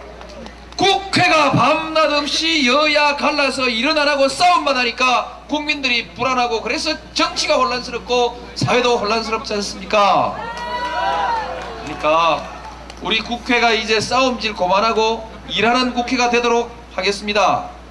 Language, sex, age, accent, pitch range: Korean, male, 40-59, native, 240-315 Hz